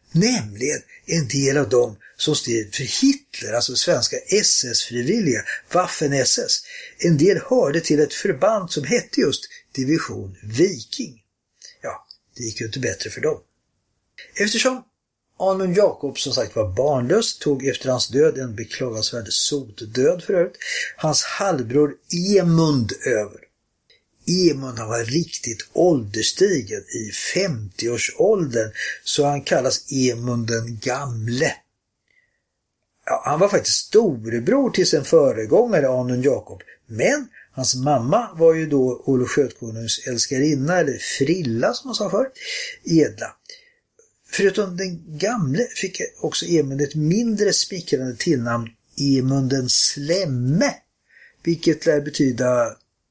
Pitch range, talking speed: 125-195 Hz, 115 wpm